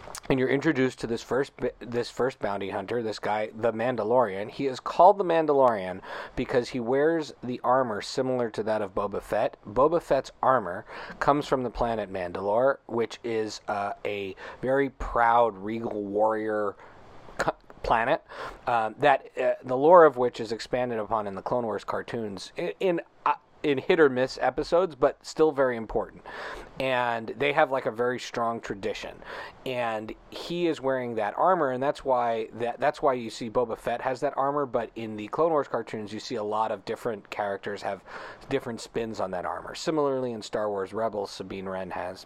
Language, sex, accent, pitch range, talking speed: English, male, American, 110-140 Hz, 180 wpm